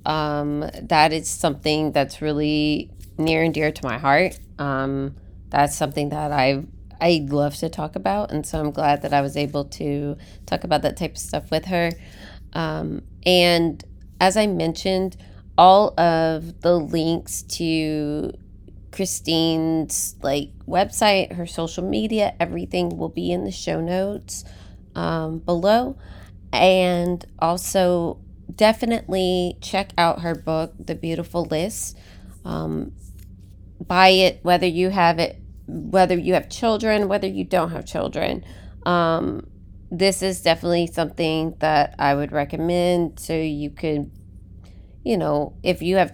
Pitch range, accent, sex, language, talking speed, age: 140-175 Hz, American, female, English, 140 wpm, 30-49